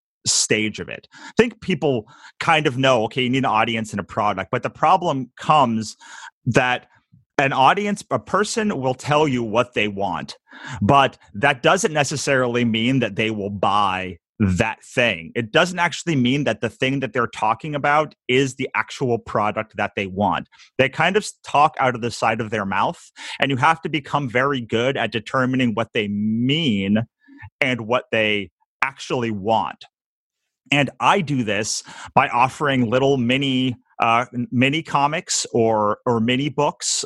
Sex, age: male, 30-49